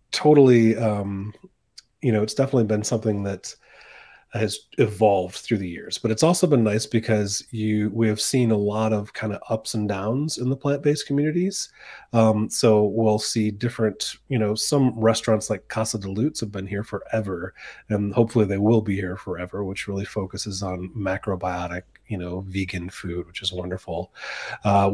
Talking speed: 175 wpm